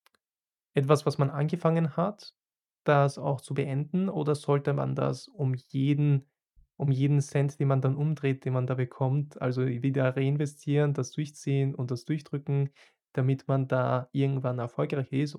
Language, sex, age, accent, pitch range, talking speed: German, male, 20-39, German, 135-150 Hz, 150 wpm